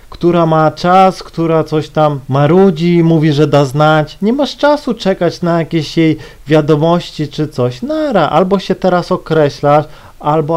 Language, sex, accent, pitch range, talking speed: Polish, male, native, 135-175 Hz, 155 wpm